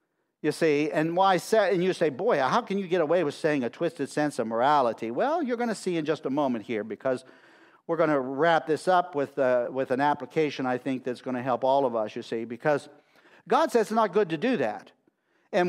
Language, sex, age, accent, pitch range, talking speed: English, male, 50-69, American, 135-200 Hz, 245 wpm